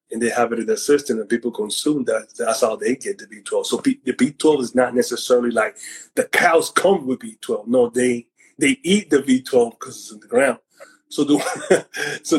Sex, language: male, English